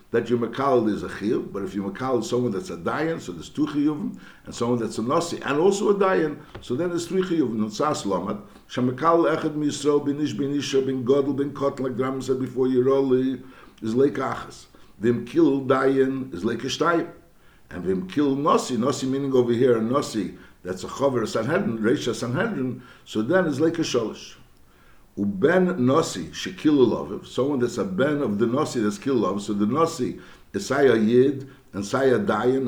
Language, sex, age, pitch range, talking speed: English, male, 60-79, 115-150 Hz, 180 wpm